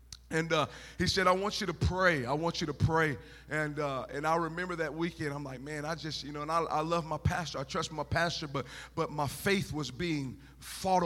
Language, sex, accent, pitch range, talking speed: English, male, American, 150-180 Hz, 245 wpm